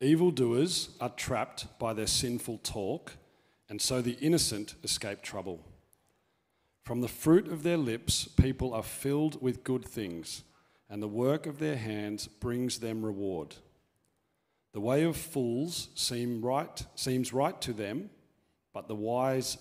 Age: 40-59